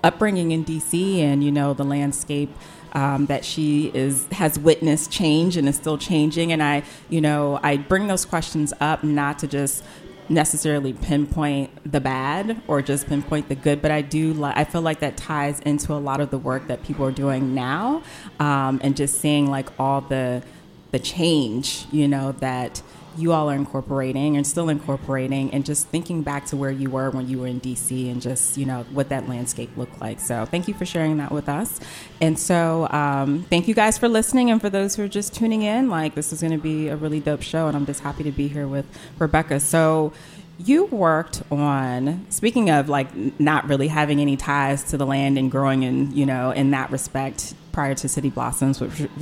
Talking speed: 210 wpm